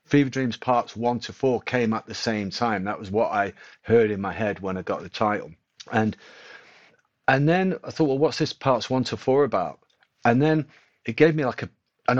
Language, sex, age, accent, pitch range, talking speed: English, male, 40-59, British, 110-130 Hz, 220 wpm